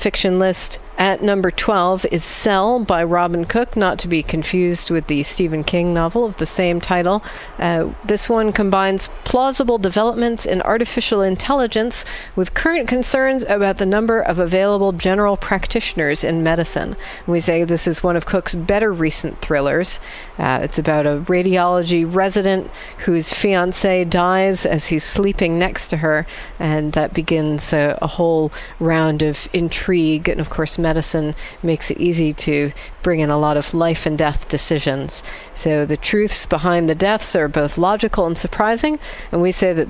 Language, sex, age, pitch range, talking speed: English, female, 40-59, 165-205 Hz, 160 wpm